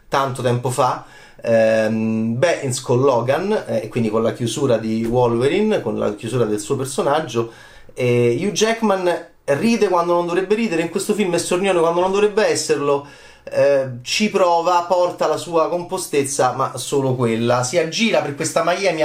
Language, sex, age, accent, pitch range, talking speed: Italian, male, 30-49, native, 125-175 Hz, 165 wpm